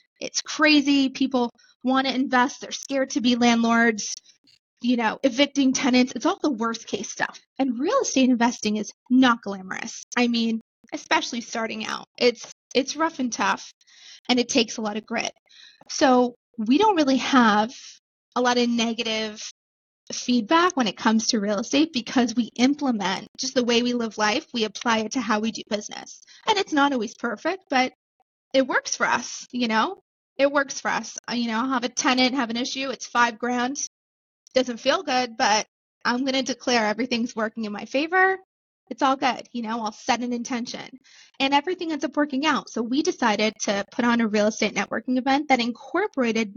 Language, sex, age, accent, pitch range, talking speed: English, female, 20-39, American, 230-270 Hz, 190 wpm